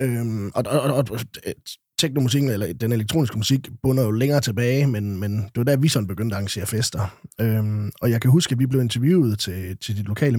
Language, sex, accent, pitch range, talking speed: Danish, male, native, 110-140 Hz, 215 wpm